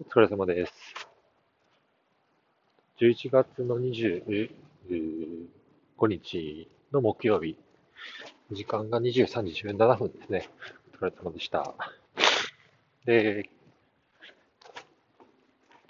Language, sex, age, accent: Japanese, male, 40-59, native